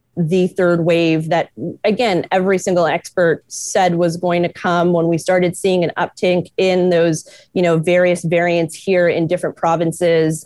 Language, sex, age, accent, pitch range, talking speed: English, female, 30-49, American, 170-190 Hz, 165 wpm